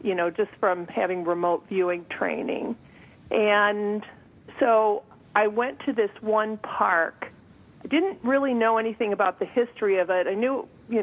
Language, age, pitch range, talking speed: English, 50-69, 185-220 Hz, 160 wpm